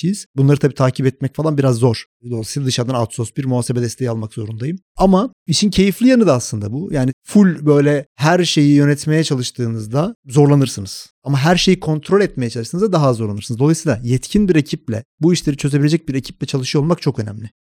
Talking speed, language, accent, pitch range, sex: 175 wpm, Turkish, native, 120-165 Hz, male